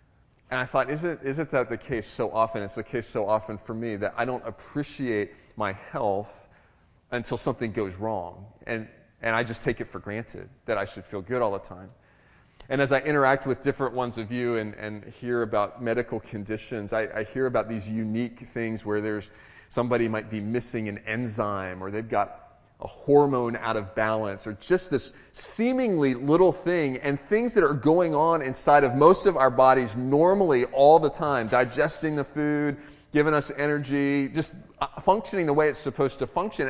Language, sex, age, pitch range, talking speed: English, male, 30-49, 110-150 Hz, 195 wpm